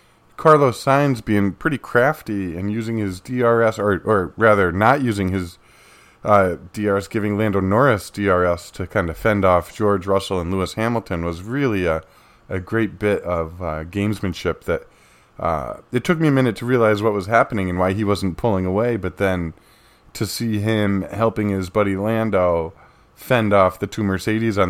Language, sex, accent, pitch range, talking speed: English, male, American, 90-110 Hz, 175 wpm